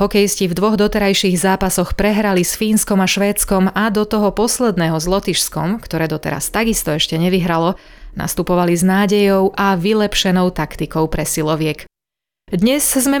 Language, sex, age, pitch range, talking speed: Slovak, female, 30-49, 170-210 Hz, 135 wpm